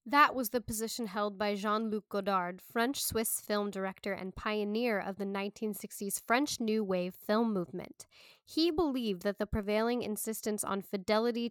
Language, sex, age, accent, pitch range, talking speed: English, female, 10-29, American, 195-245 Hz, 150 wpm